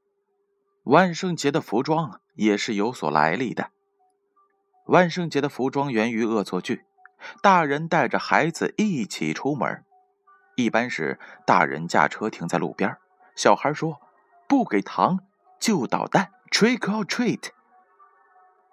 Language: Chinese